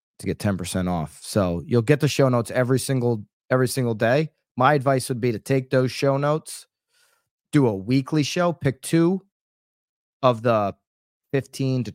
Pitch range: 110-135 Hz